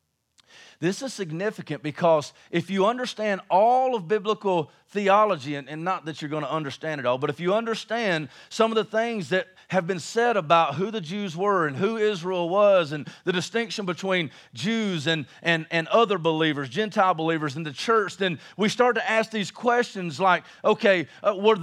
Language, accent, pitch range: English, American, 180-245 Hz